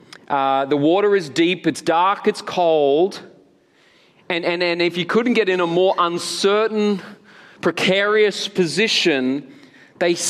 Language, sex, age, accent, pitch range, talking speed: English, male, 30-49, Australian, 155-195 Hz, 135 wpm